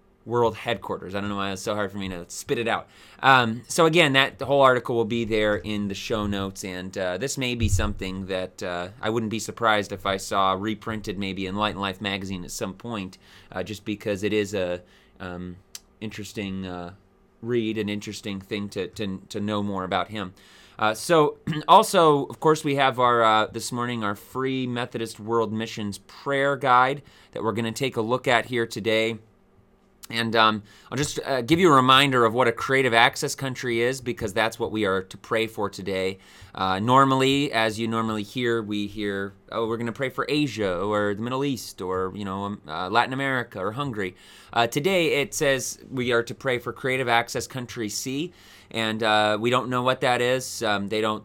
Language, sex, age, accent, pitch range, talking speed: English, male, 30-49, American, 100-125 Hz, 210 wpm